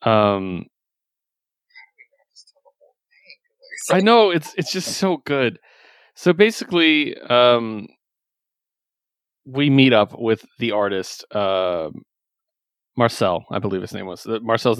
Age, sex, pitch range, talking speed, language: 30-49, male, 110-135 Hz, 105 wpm, English